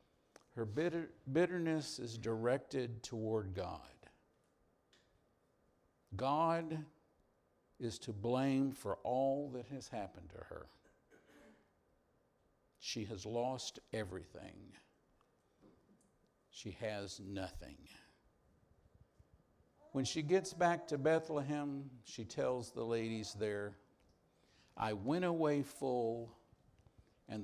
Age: 60-79